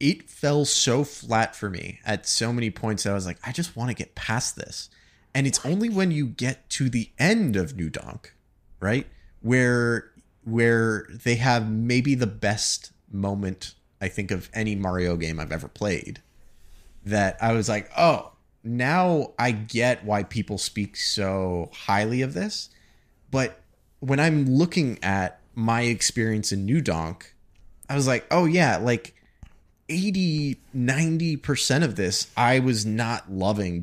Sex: male